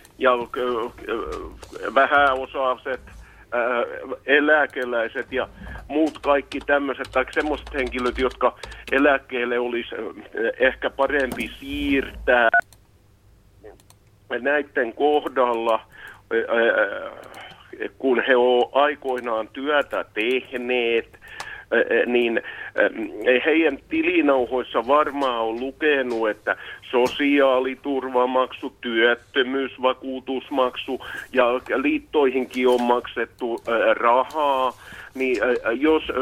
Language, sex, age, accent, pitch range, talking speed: Finnish, male, 50-69, native, 125-140 Hz, 65 wpm